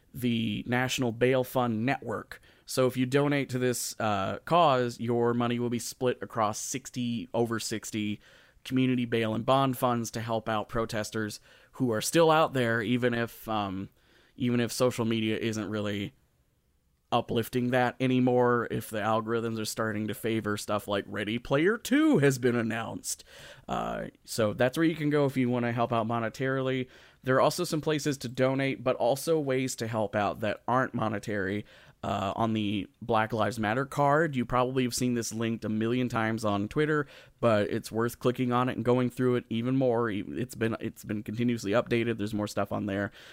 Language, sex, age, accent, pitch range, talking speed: English, male, 30-49, American, 110-130 Hz, 185 wpm